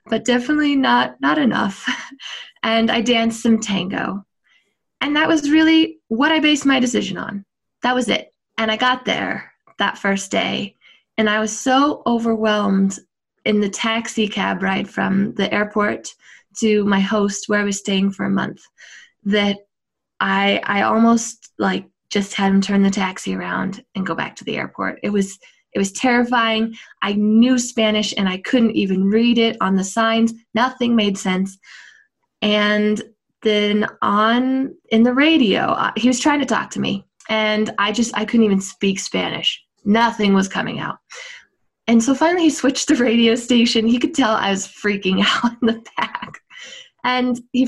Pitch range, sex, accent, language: 200-240 Hz, female, American, English